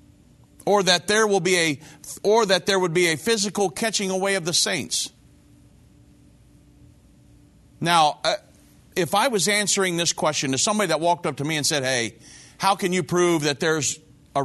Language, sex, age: English, male, 40-59